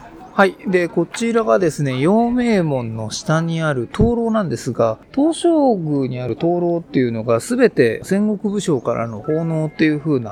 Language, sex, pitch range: Japanese, male, 125-205 Hz